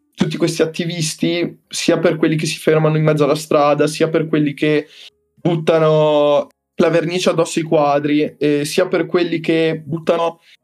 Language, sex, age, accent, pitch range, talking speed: Italian, male, 20-39, native, 145-185 Hz, 165 wpm